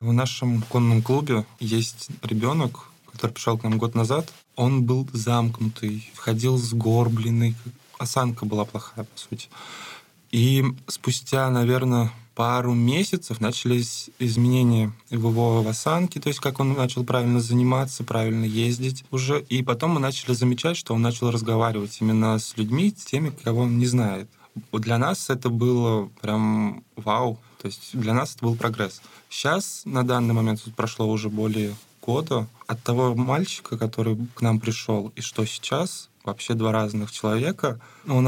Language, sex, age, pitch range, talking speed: Russian, male, 20-39, 115-130 Hz, 150 wpm